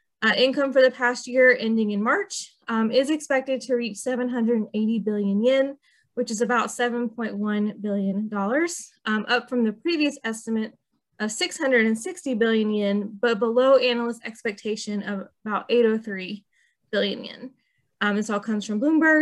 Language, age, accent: English, 20-39, American